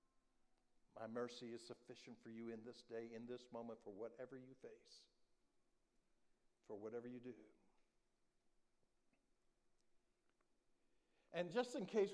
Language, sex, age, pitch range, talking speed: English, male, 60-79, 110-145 Hz, 120 wpm